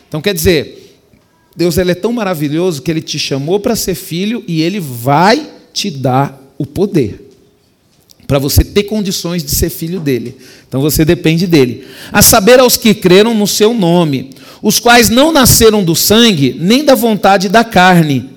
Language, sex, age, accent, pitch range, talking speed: Portuguese, male, 40-59, Brazilian, 145-215 Hz, 170 wpm